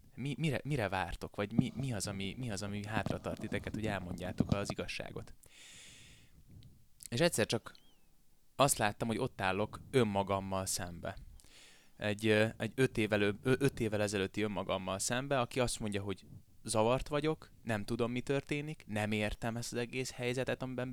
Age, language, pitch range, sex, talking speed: 20-39, Hungarian, 100-125 Hz, male, 150 wpm